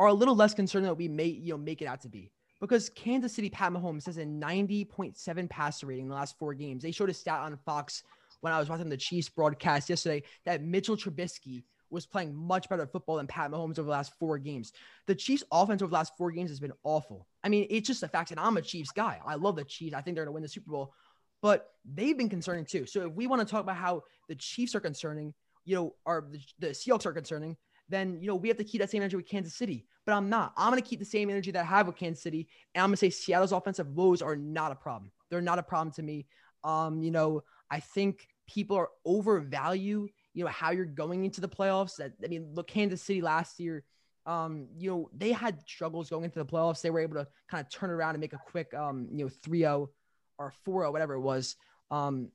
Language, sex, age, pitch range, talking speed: English, male, 20-39, 155-195 Hz, 255 wpm